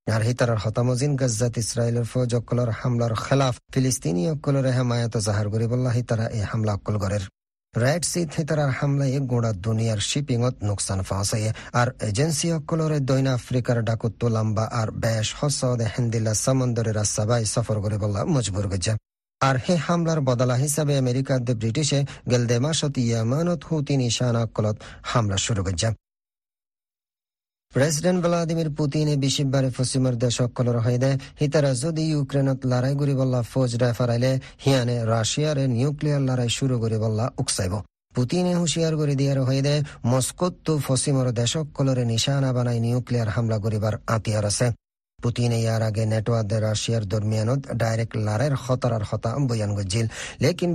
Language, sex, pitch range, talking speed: Bengali, male, 115-135 Hz, 120 wpm